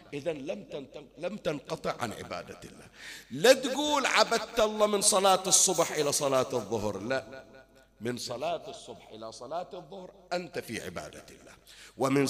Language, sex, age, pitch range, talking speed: Arabic, male, 50-69, 120-185 Hz, 140 wpm